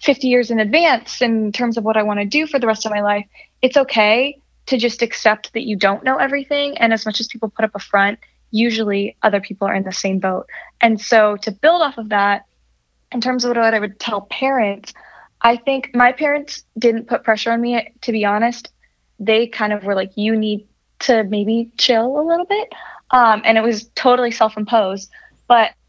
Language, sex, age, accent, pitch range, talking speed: English, female, 10-29, American, 200-240 Hz, 215 wpm